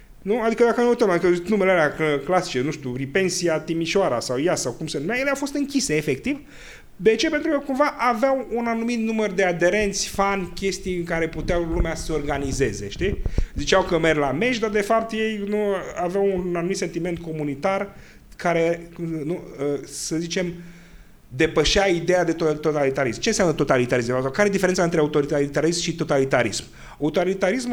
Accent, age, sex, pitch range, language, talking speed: native, 30-49, male, 150-215 Hz, Romanian, 170 wpm